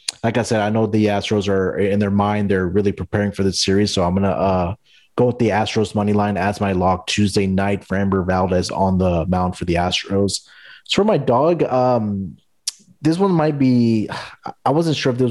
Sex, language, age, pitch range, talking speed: male, English, 20-39, 95-115 Hz, 220 wpm